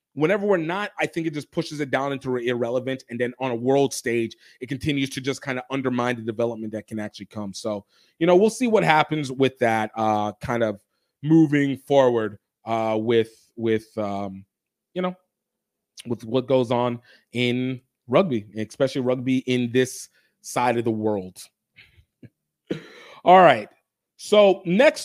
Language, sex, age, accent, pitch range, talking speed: English, male, 30-49, American, 125-185 Hz, 170 wpm